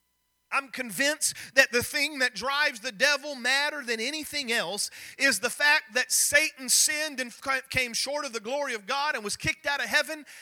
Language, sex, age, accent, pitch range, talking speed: English, male, 40-59, American, 185-290 Hz, 190 wpm